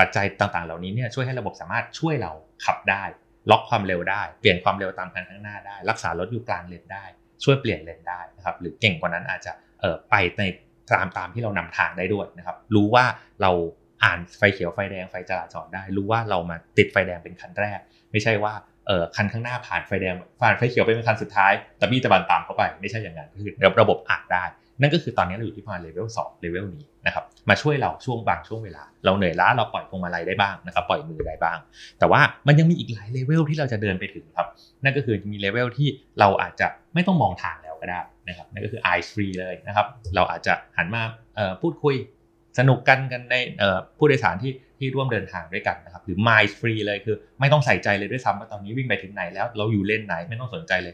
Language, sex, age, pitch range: Thai, male, 30-49, 95-120 Hz